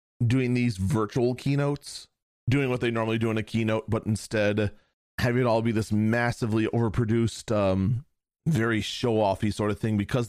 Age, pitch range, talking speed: 30-49, 105-130 Hz, 165 wpm